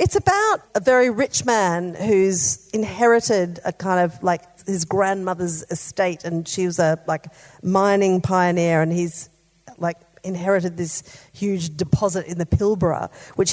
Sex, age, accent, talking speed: female, 40-59, Australian, 145 wpm